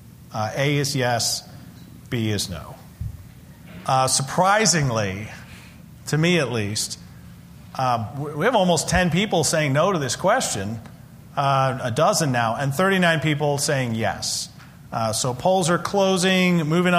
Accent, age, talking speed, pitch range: American, 40-59, 140 wpm, 130-165 Hz